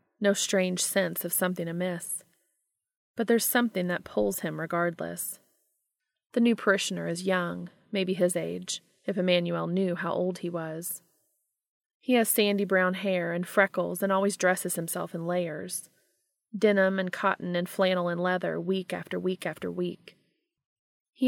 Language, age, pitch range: English, 30-49, 175-200 Hz